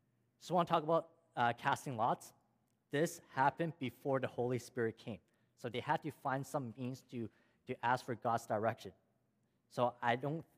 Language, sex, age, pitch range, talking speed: English, male, 20-39, 115-140 Hz, 180 wpm